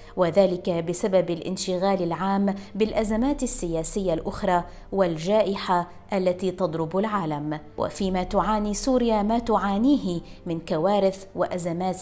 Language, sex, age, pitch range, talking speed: Arabic, female, 20-39, 175-215 Hz, 95 wpm